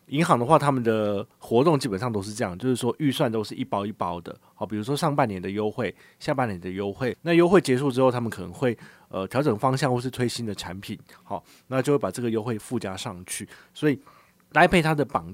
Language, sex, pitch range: Chinese, male, 105-140 Hz